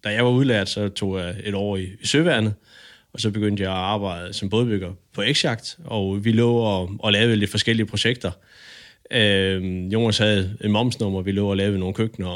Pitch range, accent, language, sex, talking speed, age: 95-110 Hz, native, Danish, male, 205 wpm, 20-39